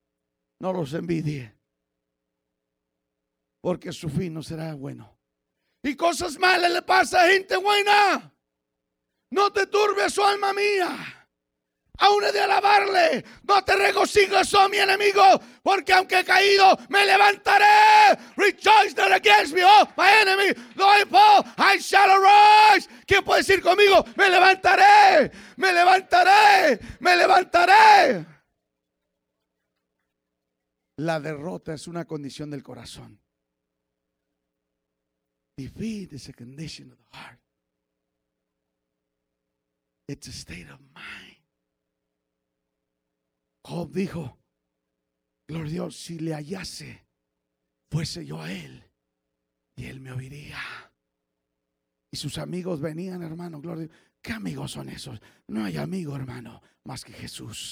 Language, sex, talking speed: English, male, 120 wpm